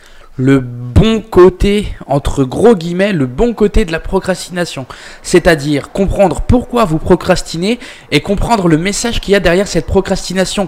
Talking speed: 150 wpm